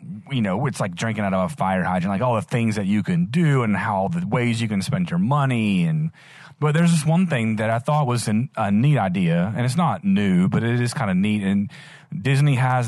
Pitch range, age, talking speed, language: 115-165 Hz, 30-49, 250 wpm, English